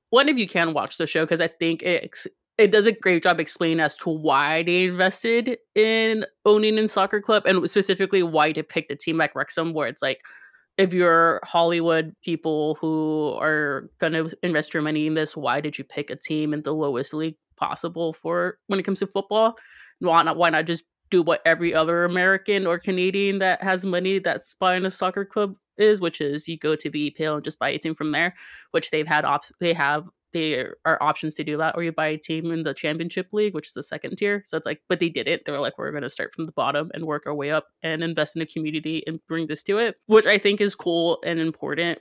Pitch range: 155-190 Hz